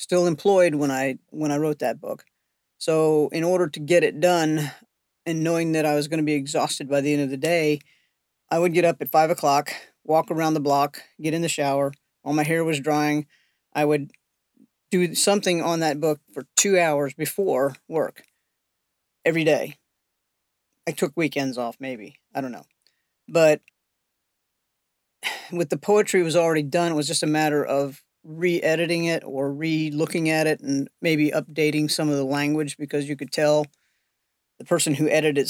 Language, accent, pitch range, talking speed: English, American, 145-170 Hz, 185 wpm